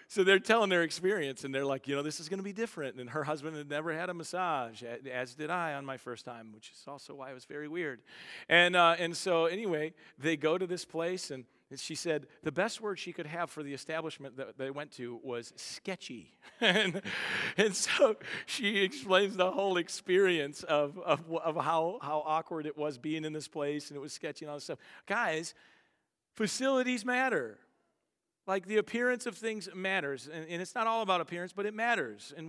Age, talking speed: 40-59, 210 wpm